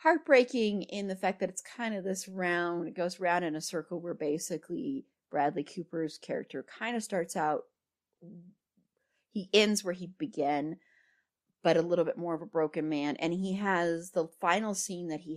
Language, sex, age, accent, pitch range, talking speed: English, female, 30-49, American, 155-200 Hz, 185 wpm